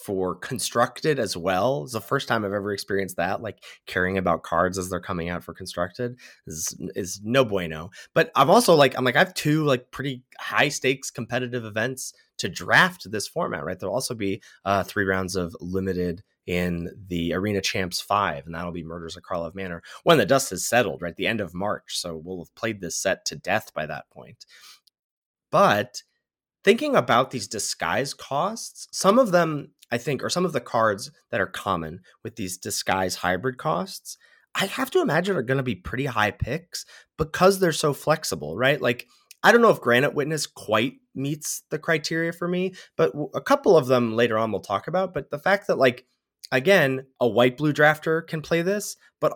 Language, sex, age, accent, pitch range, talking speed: English, male, 20-39, American, 95-155 Hz, 200 wpm